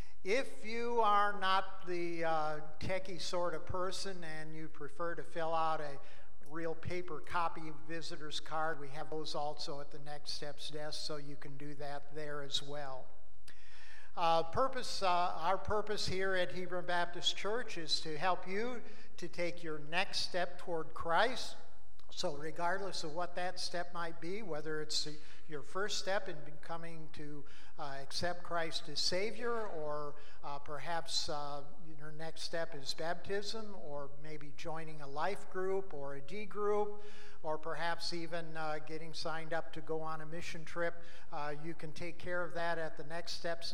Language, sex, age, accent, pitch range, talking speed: English, male, 50-69, American, 150-175 Hz, 175 wpm